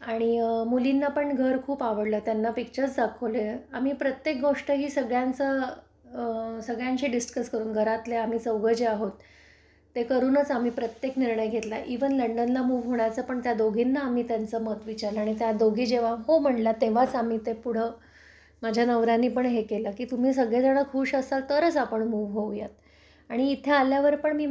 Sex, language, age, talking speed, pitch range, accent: female, Marathi, 20-39, 125 wpm, 225-275 Hz, native